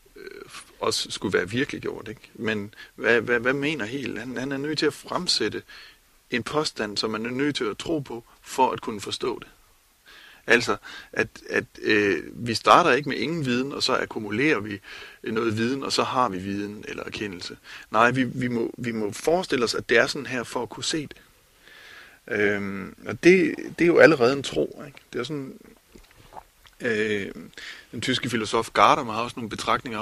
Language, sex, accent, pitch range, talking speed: Danish, male, native, 115-165 Hz, 190 wpm